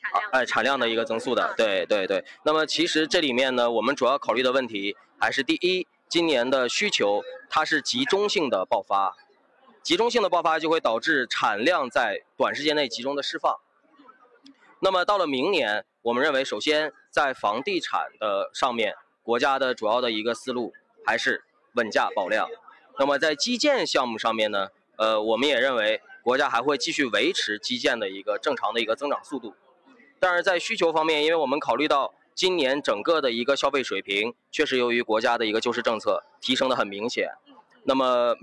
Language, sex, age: Chinese, male, 20-39